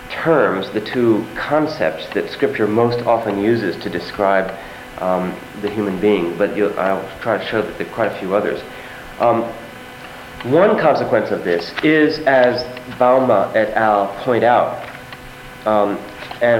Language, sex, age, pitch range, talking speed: English, male, 40-59, 100-125 Hz, 150 wpm